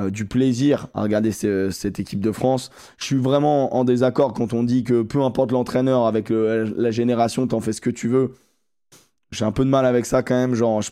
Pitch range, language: 115-145 Hz, French